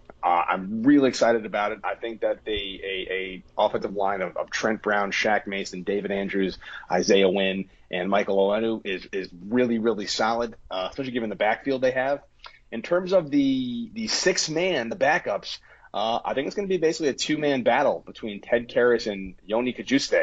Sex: male